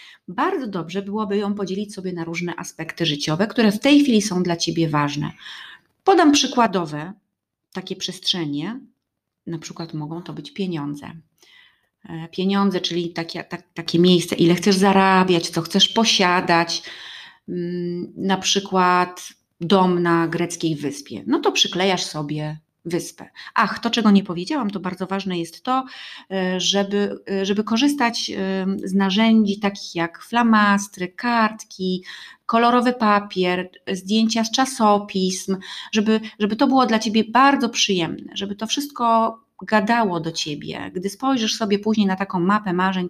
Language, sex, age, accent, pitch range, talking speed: Polish, female, 30-49, native, 175-215 Hz, 135 wpm